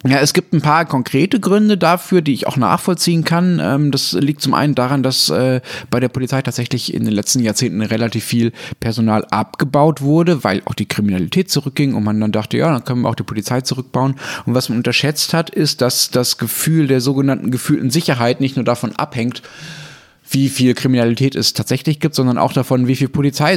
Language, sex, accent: German, male, German